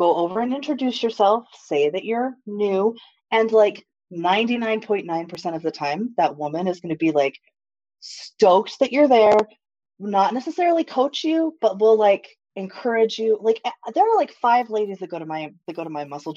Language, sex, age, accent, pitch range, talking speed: English, female, 20-39, American, 165-235 Hz, 185 wpm